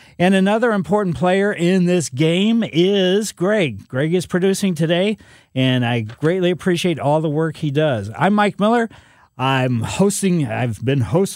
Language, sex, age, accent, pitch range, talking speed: English, male, 50-69, American, 130-180 Hz, 160 wpm